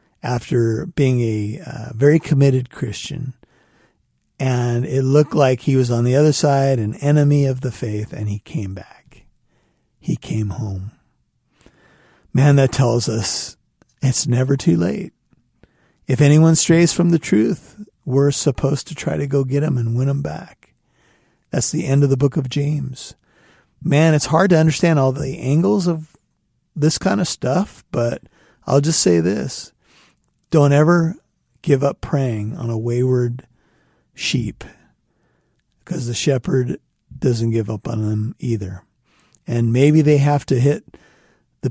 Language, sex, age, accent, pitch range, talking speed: English, male, 50-69, American, 120-150 Hz, 150 wpm